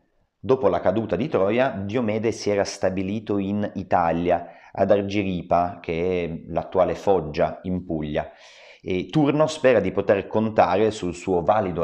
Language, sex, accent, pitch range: Italian, male, native, 85-110 Hz